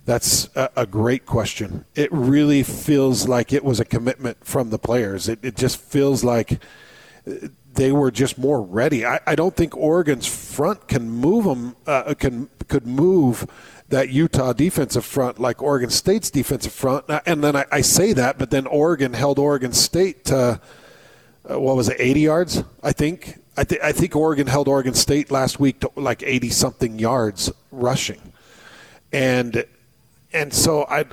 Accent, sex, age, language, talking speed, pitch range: American, male, 40-59, English, 170 wpm, 125-155 Hz